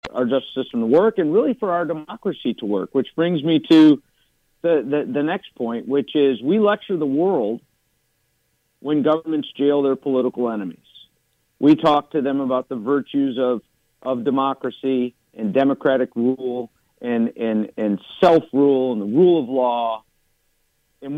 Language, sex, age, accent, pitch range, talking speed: English, male, 50-69, American, 125-160 Hz, 160 wpm